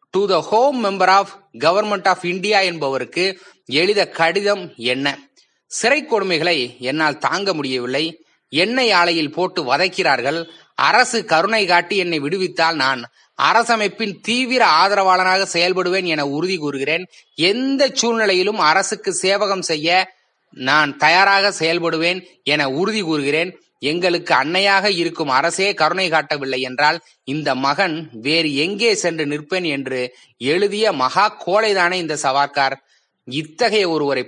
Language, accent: Tamil, native